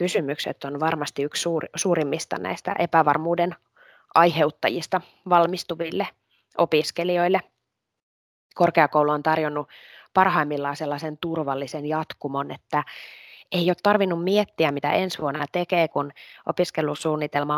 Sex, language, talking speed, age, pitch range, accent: female, Finnish, 100 wpm, 20-39, 145-185 Hz, native